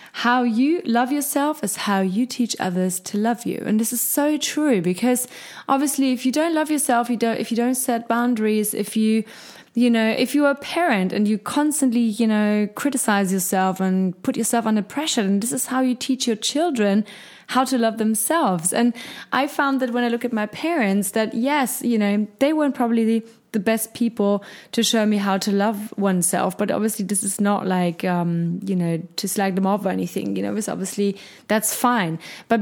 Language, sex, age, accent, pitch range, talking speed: German, female, 20-39, German, 195-245 Hz, 210 wpm